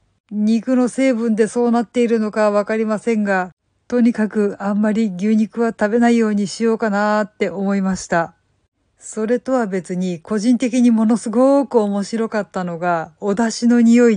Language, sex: Japanese, female